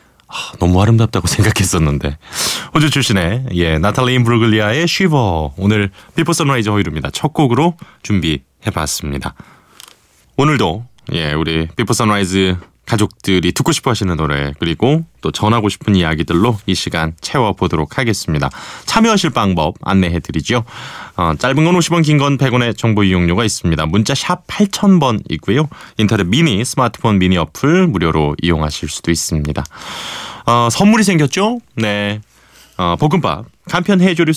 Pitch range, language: 85-140 Hz, Korean